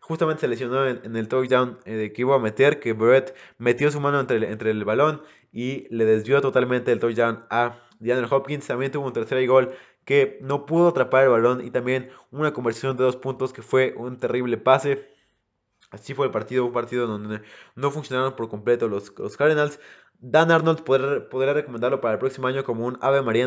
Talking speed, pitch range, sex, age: 200 wpm, 120-140 Hz, male, 20-39